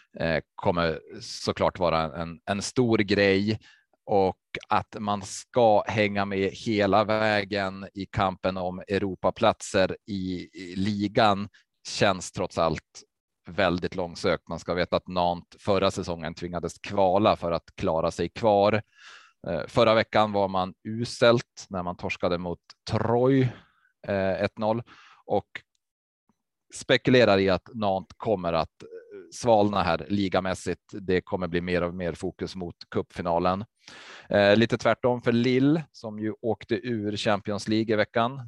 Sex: male